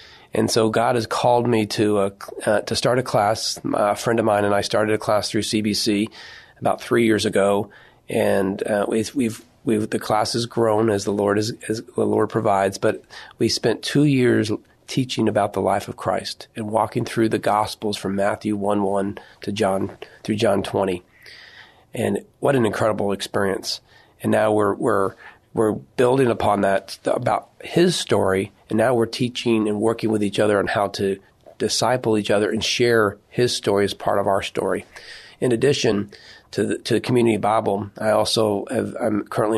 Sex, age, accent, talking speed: male, 40-59, American, 185 wpm